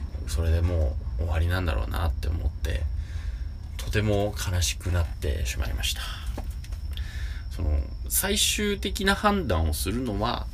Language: Japanese